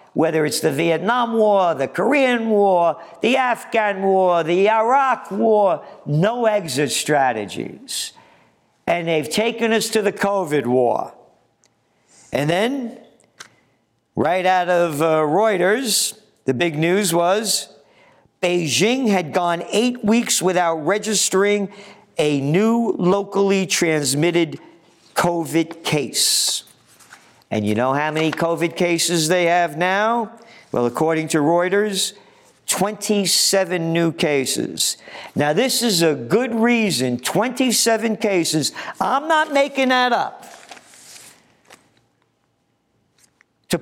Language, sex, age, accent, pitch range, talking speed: English, male, 50-69, American, 165-220 Hz, 110 wpm